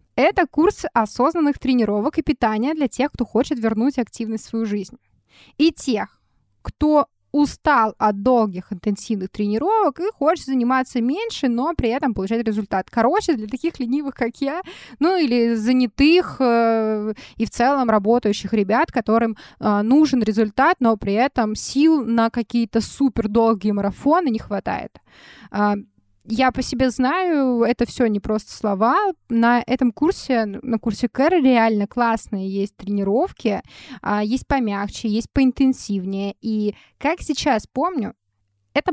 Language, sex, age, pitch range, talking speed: Russian, female, 20-39, 215-275 Hz, 135 wpm